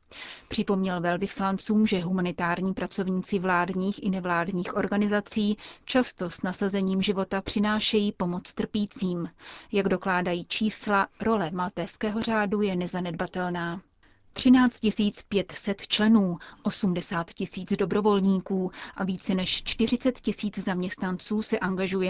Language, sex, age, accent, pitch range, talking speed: Czech, female, 30-49, native, 185-210 Hz, 105 wpm